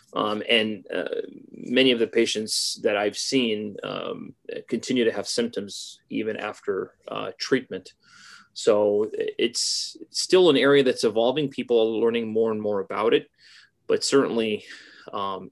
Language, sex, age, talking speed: English, male, 30-49, 145 wpm